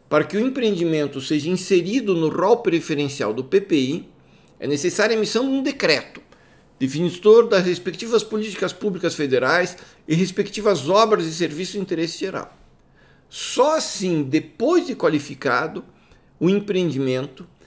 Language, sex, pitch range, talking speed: Portuguese, male, 145-205 Hz, 130 wpm